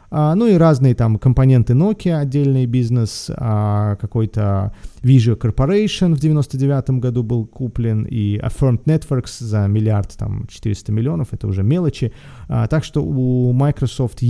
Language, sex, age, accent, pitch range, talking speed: Russian, male, 30-49, native, 105-135 Hz, 145 wpm